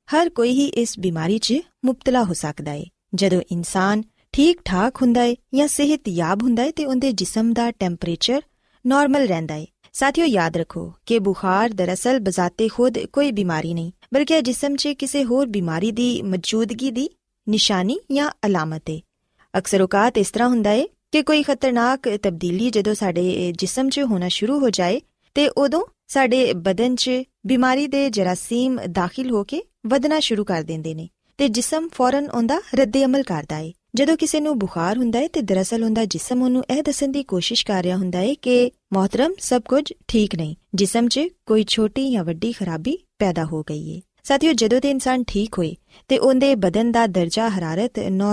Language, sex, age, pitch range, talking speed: Punjabi, female, 20-39, 185-265 Hz, 125 wpm